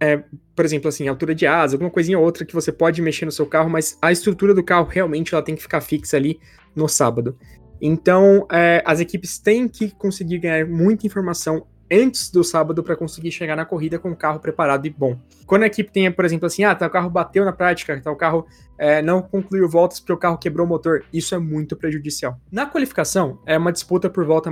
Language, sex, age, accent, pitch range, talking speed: Portuguese, male, 20-39, Brazilian, 155-185 Hz, 225 wpm